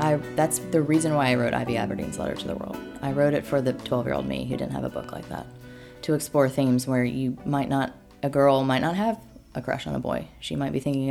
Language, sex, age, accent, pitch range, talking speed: English, female, 20-39, American, 125-145 Hz, 270 wpm